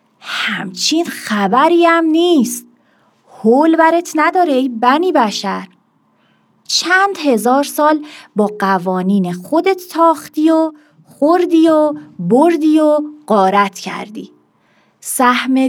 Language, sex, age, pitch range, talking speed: Persian, female, 30-49, 210-305 Hz, 95 wpm